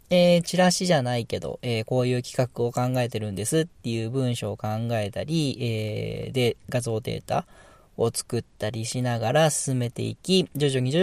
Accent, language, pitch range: native, Japanese, 115-150 Hz